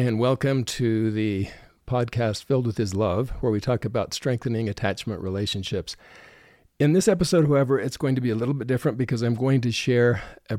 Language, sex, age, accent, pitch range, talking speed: English, male, 50-69, American, 105-130 Hz, 195 wpm